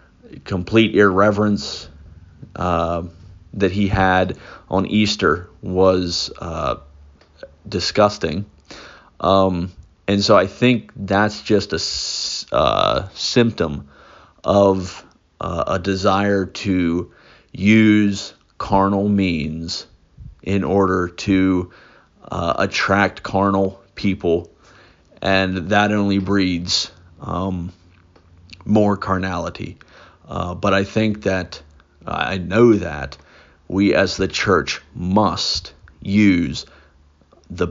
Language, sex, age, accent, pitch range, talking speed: English, male, 30-49, American, 85-100 Hz, 90 wpm